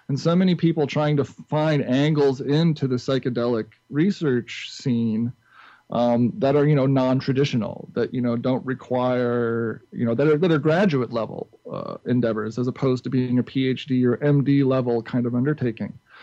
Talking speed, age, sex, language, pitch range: 165 wpm, 40-59, male, English, 120-150 Hz